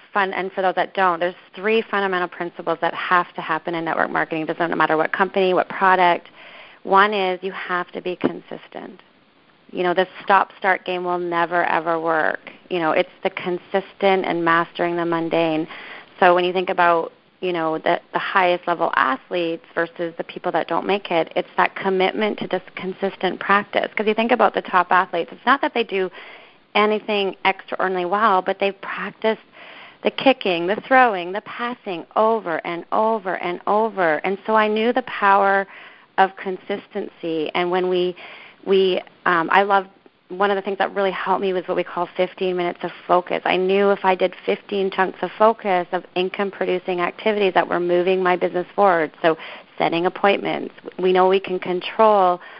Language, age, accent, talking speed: English, 30-49, American, 185 wpm